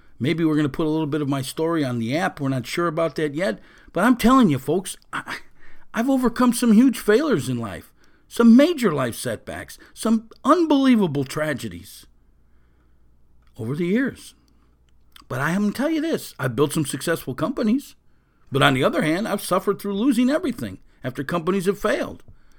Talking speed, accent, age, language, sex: 185 wpm, American, 50-69, English, male